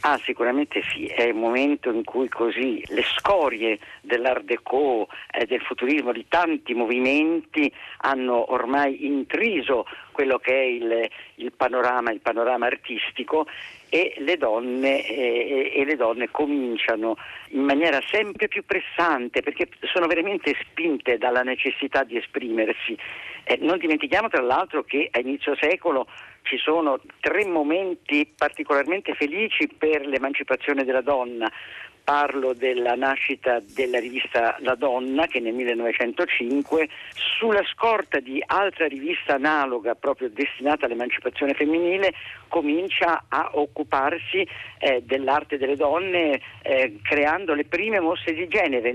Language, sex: Italian, male